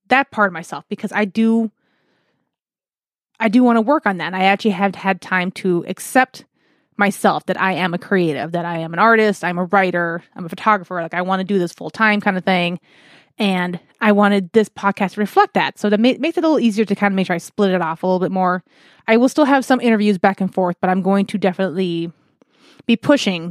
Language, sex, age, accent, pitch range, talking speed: English, female, 20-39, American, 185-225 Hz, 235 wpm